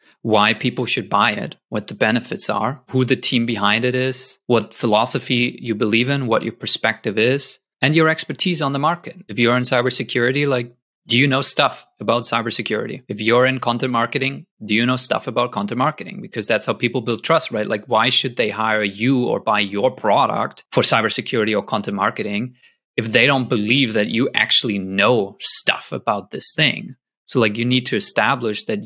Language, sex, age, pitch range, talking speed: English, male, 30-49, 115-145 Hz, 195 wpm